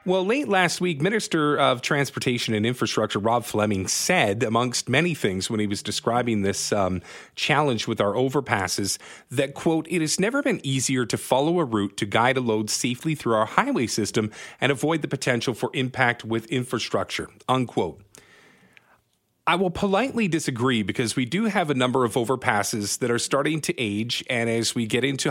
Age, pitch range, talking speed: 40-59, 115-150 Hz, 180 wpm